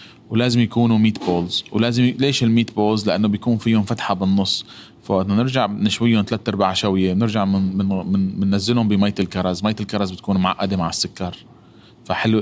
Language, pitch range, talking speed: Arabic, 95-120 Hz, 155 wpm